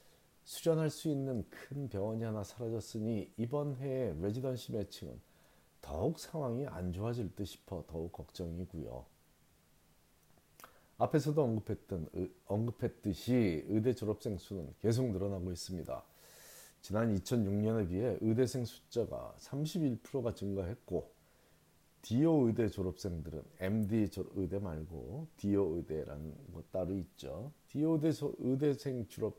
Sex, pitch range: male, 90-130 Hz